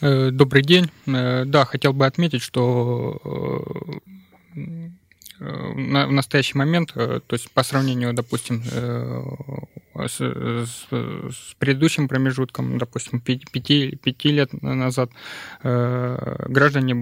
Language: Russian